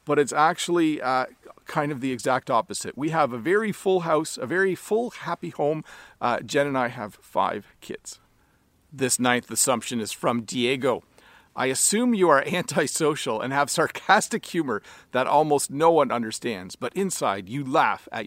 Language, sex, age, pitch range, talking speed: English, male, 40-59, 130-180 Hz, 170 wpm